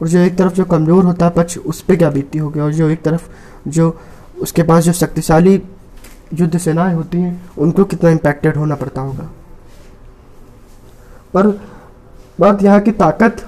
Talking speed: 175 wpm